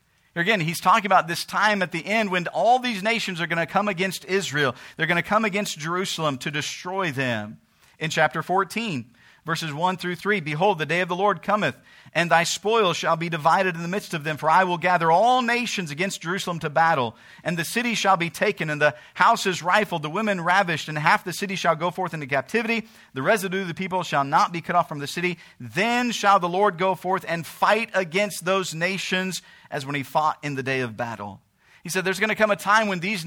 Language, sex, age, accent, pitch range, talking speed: English, male, 50-69, American, 165-210 Hz, 230 wpm